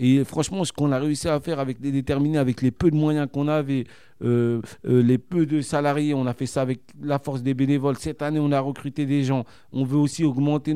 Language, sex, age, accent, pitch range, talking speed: French, male, 40-59, French, 130-150 Hz, 245 wpm